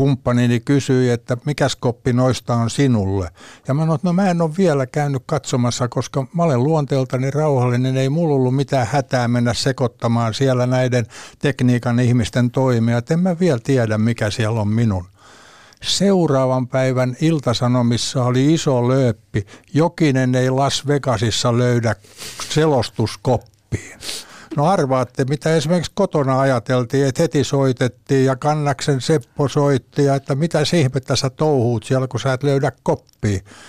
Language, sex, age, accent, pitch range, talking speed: Finnish, male, 60-79, native, 120-145 Hz, 140 wpm